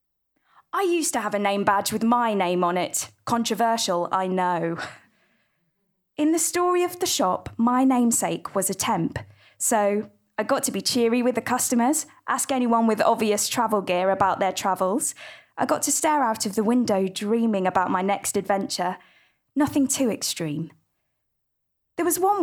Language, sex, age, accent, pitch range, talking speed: English, female, 20-39, British, 185-250 Hz, 170 wpm